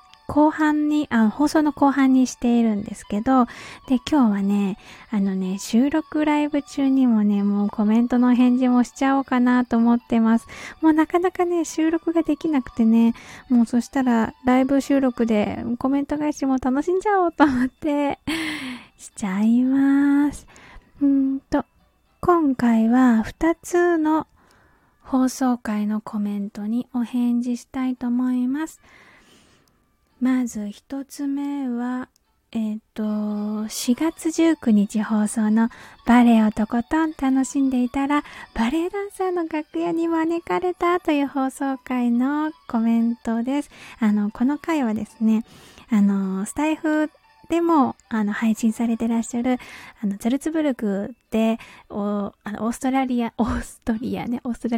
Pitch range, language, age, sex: 225-290 Hz, Japanese, 20-39, female